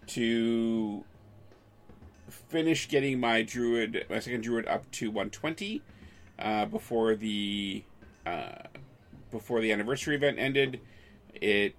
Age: 30-49